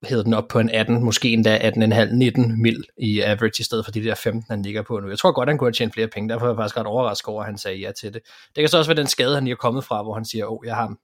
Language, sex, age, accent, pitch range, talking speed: Danish, male, 20-39, native, 110-130 Hz, 335 wpm